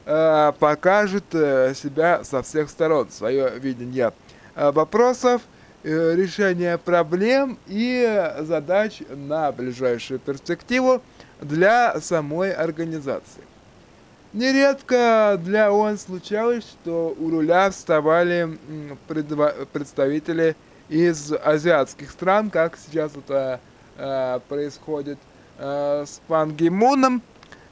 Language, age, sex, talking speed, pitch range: Russian, 20-39, male, 80 wpm, 145-205 Hz